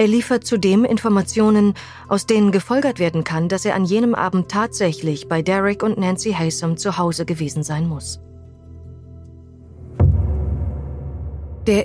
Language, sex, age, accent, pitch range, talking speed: German, female, 30-49, German, 125-205 Hz, 130 wpm